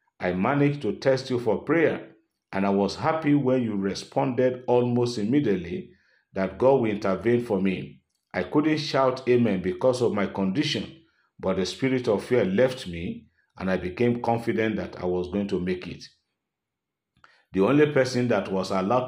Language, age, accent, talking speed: English, 50-69, Nigerian, 170 wpm